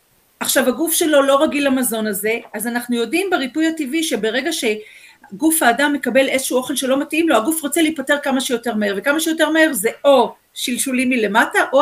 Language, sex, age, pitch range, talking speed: Hebrew, female, 40-59, 230-305 Hz, 180 wpm